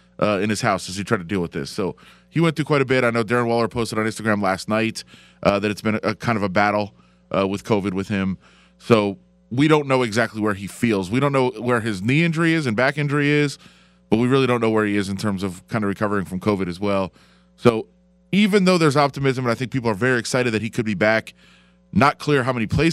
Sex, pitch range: male, 100-130 Hz